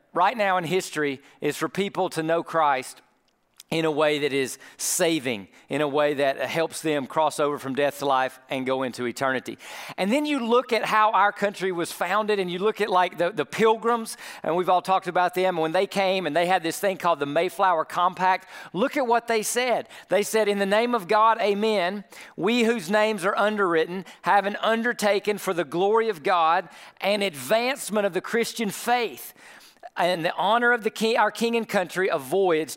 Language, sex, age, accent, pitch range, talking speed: English, male, 40-59, American, 165-220 Hz, 205 wpm